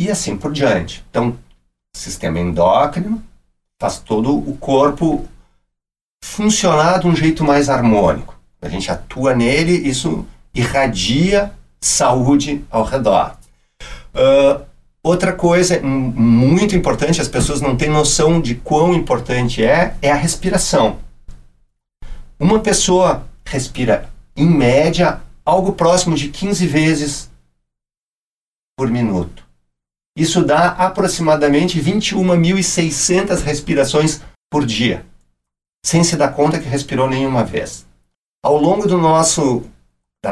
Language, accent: Portuguese, Brazilian